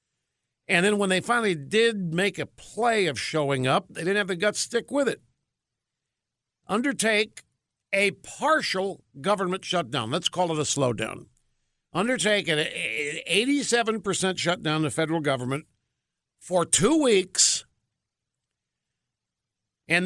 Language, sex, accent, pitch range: English, male, American, 140-225 Hz